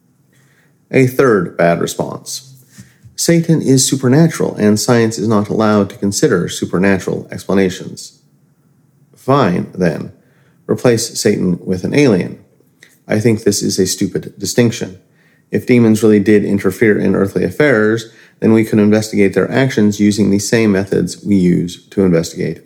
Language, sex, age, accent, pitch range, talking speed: English, male, 40-59, American, 105-155 Hz, 140 wpm